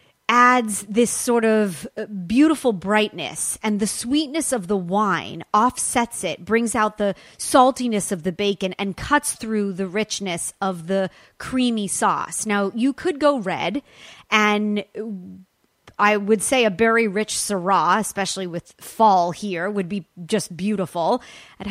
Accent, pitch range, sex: American, 185-230 Hz, female